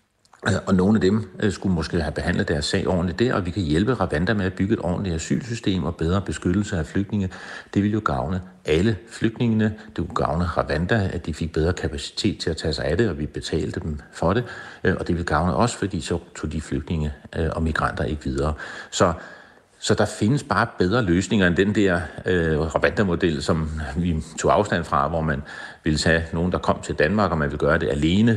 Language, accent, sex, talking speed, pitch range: Danish, native, male, 215 wpm, 80-100 Hz